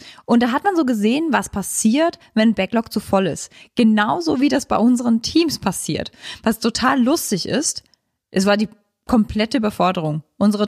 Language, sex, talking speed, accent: German, female, 170 wpm, German